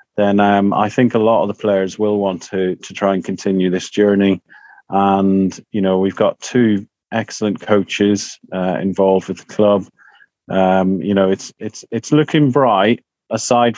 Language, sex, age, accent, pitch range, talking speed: English, male, 30-49, British, 95-115 Hz, 175 wpm